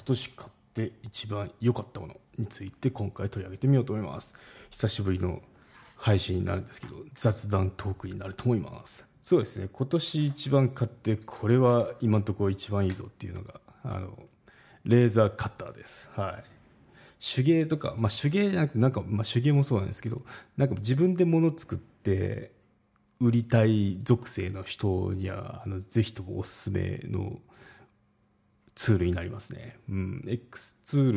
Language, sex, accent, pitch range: Japanese, male, native, 100-125 Hz